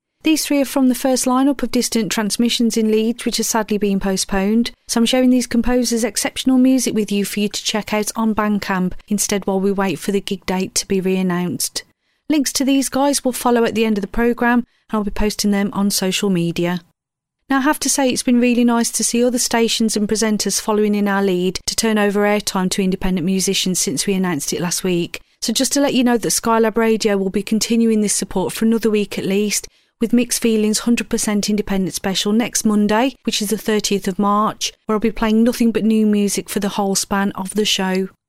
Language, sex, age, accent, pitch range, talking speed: English, female, 40-59, British, 200-235 Hz, 225 wpm